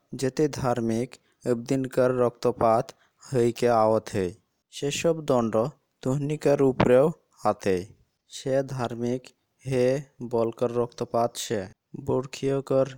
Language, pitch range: English, 115-135 Hz